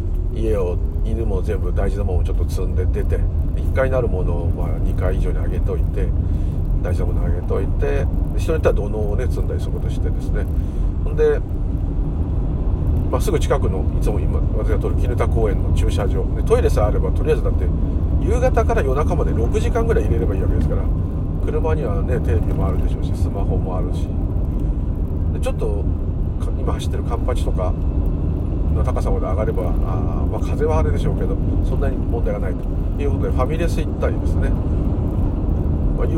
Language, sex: Japanese, male